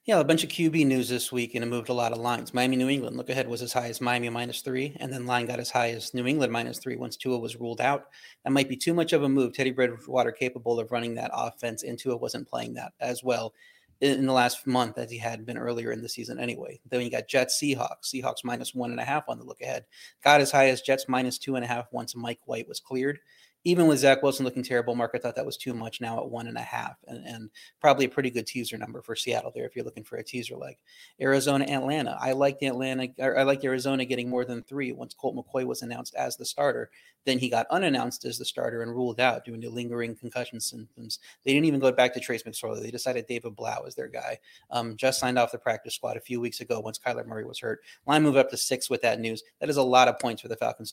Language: English